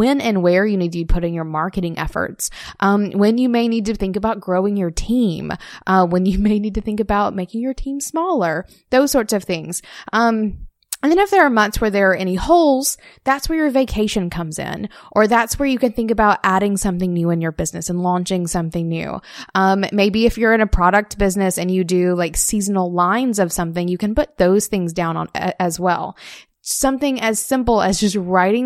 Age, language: 20-39, English